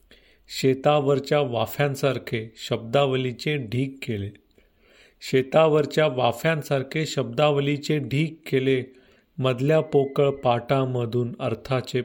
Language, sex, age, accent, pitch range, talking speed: Marathi, male, 40-59, native, 115-150 Hz, 55 wpm